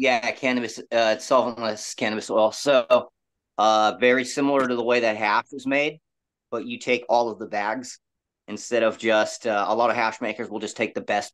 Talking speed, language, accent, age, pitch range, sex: 200 wpm, English, American, 30-49, 105-130 Hz, male